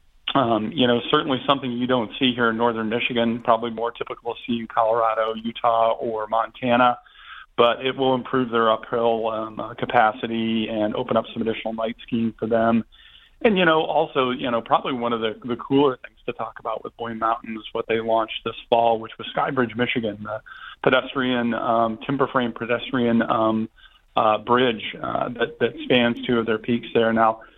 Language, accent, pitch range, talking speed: English, American, 115-125 Hz, 185 wpm